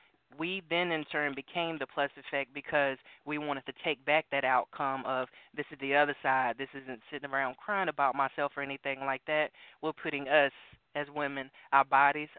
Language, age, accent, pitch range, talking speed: English, 20-39, American, 135-145 Hz, 195 wpm